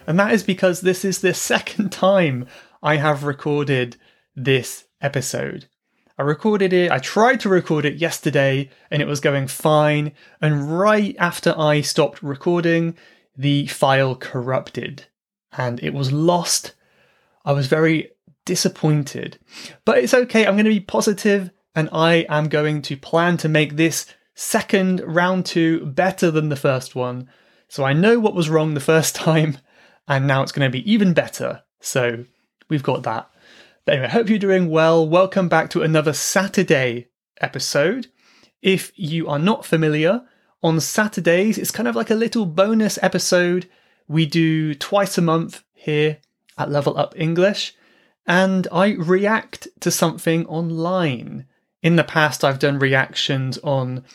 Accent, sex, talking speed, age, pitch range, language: British, male, 155 wpm, 30-49, 145-190 Hz, English